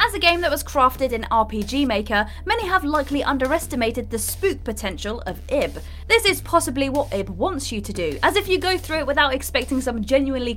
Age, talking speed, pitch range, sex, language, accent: 20-39, 210 wpm, 225-335 Hz, female, English, British